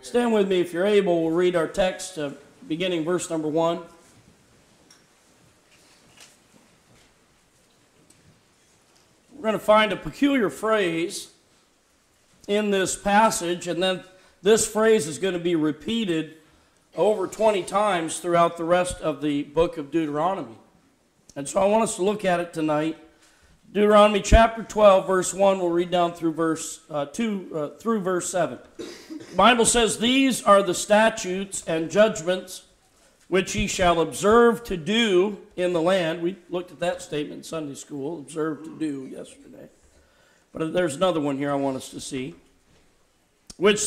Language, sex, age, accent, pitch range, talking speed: English, male, 40-59, American, 165-210 Hz, 155 wpm